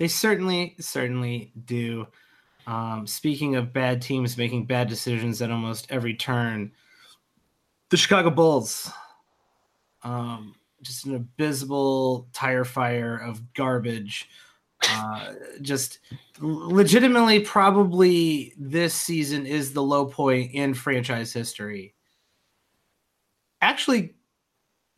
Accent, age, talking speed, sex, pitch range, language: American, 30-49, 100 wpm, male, 125-185 Hz, English